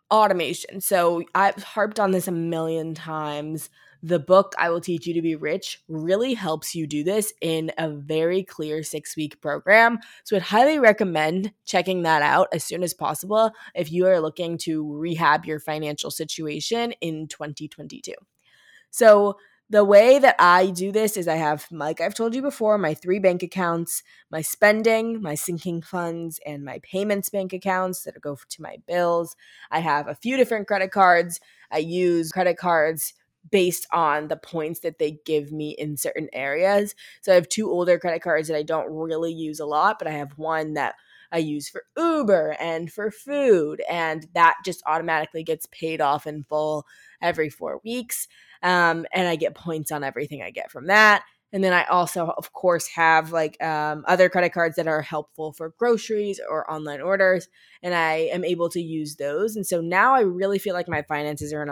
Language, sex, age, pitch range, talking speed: English, female, 20-39, 155-195 Hz, 190 wpm